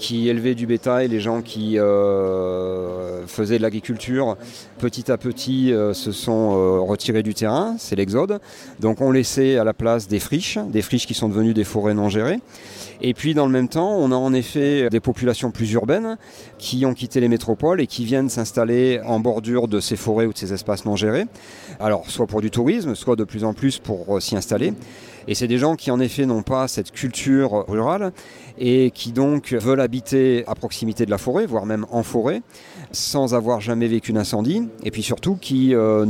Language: French